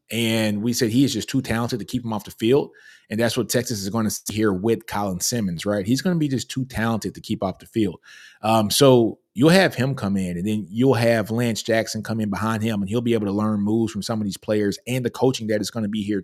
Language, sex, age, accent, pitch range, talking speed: English, male, 20-39, American, 100-120 Hz, 280 wpm